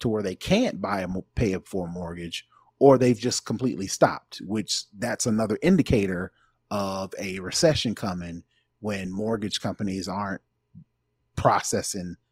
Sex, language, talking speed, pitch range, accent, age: male, English, 140 wpm, 95-120 Hz, American, 30-49